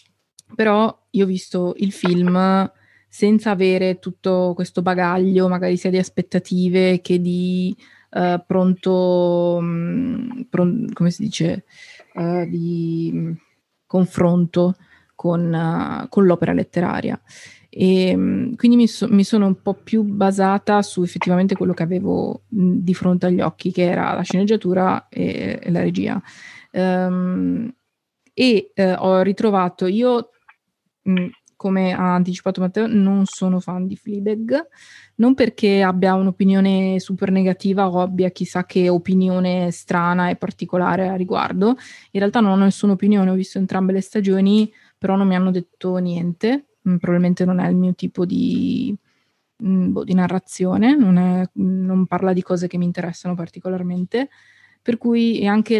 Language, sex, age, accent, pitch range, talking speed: Italian, female, 20-39, native, 180-205 Hz, 135 wpm